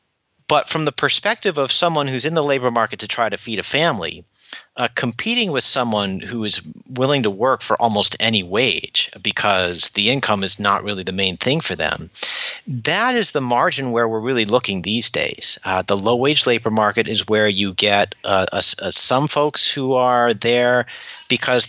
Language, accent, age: English, American, 40-59